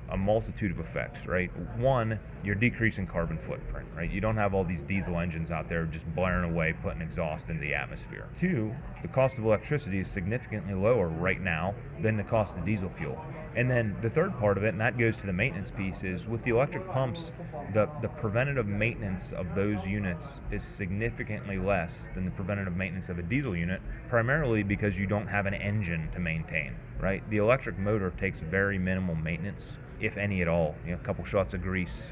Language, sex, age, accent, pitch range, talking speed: English, male, 30-49, American, 90-110 Hz, 205 wpm